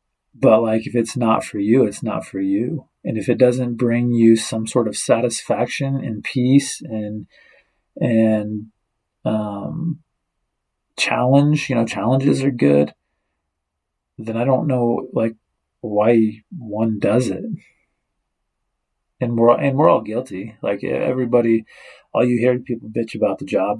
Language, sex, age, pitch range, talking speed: English, male, 40-59, 105-125 Hz, 145 wpm